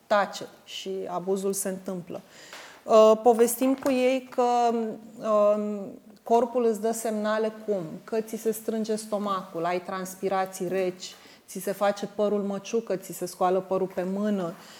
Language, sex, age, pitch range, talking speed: Romanian, female, 30-49, 190-230 Hz, 135 wpm